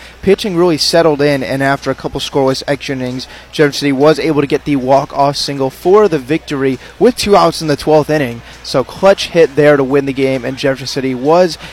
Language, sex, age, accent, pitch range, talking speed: English, male, 20-39, American, 135-160 Hz, 210 wpm